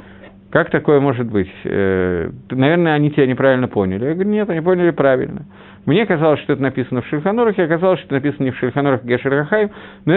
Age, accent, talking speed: 50-69, native, 190 wpm